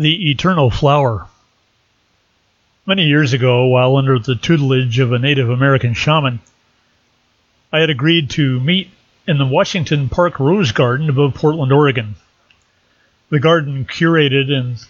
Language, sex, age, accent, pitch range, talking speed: English, male, 40-59, American, 125-150 Hz, 135 wpm